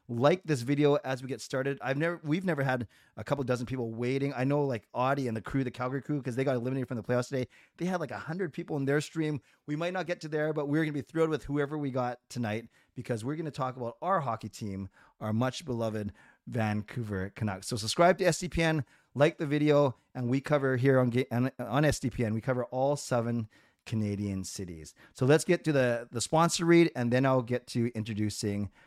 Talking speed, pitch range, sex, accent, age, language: 225 wpm, 120-150 Hz, male, American, 30-49, English